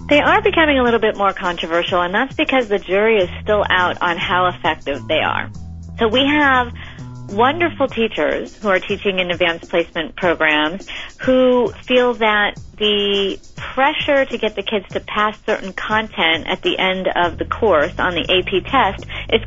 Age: 40-59